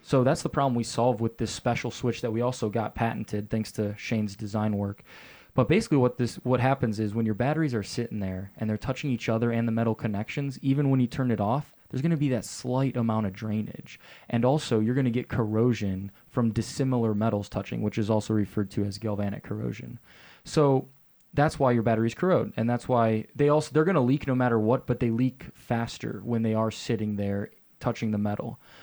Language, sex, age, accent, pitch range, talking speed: English, male, 20-39, American, 110-130 Hz, 215 wpm